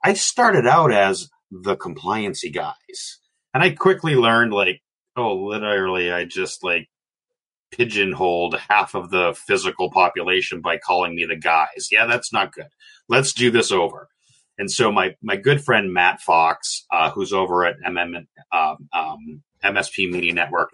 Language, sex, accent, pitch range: English, male, American, 95-145 Hz